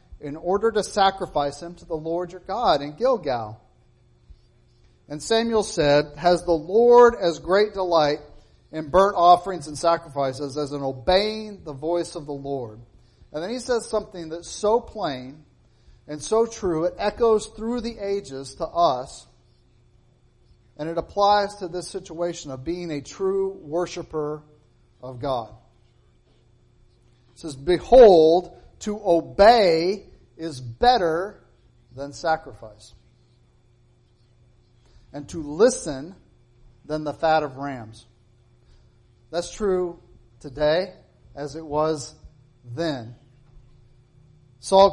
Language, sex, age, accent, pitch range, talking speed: English, male, 40-59, American, 125-185 Hz, 120 wpm